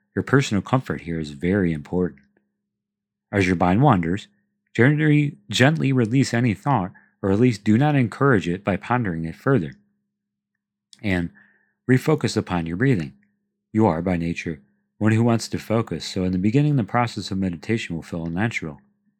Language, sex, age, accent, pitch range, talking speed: English, male, 40-59, American, 90-125 Hz, 160 wpm